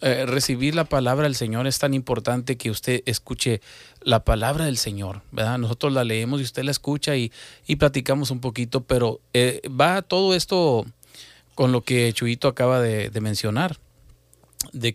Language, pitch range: Spanish, 115-155 Hz